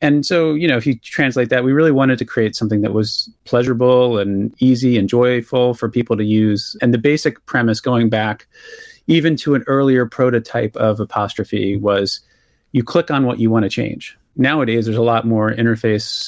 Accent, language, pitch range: American, English, 110-130 Hz